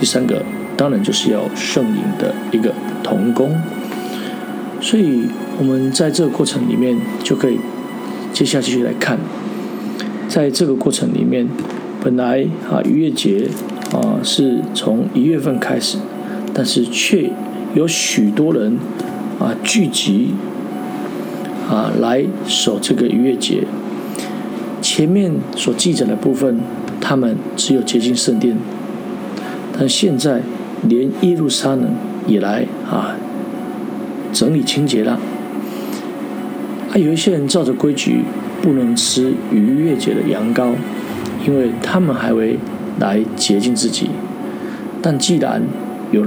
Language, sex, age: Chinese, male, 50-69